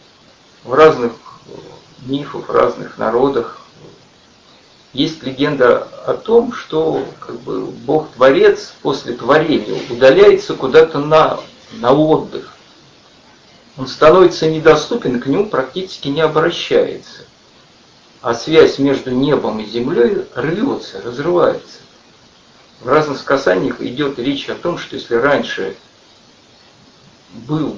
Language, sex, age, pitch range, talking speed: Russian, male, 50-69, 135-220 Hz, 105 wpm